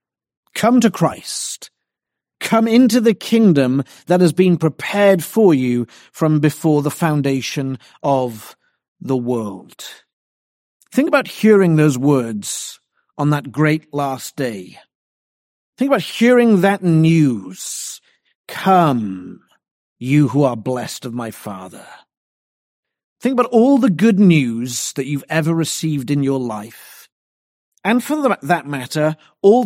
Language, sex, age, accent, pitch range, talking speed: English, male, 40-59, British, 125-185 Hz, 125 wpm